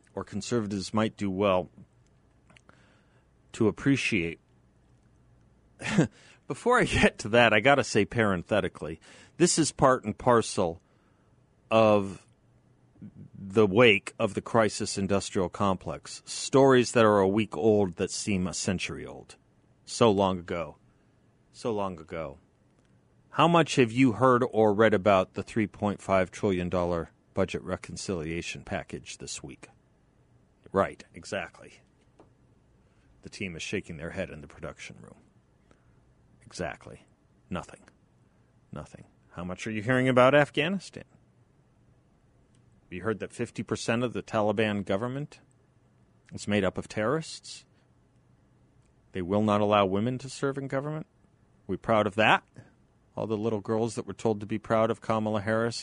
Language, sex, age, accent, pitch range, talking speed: English, male, 40-59, American, 100-125 Hz, 135 wpm